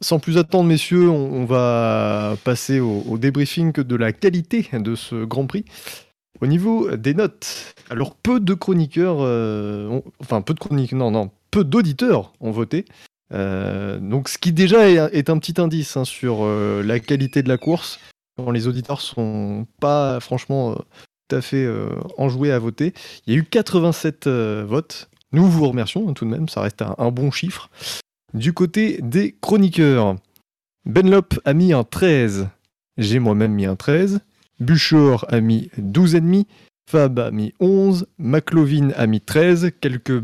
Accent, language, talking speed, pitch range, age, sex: French, French, 180 wpm, 115-165 Hz, 20-39, male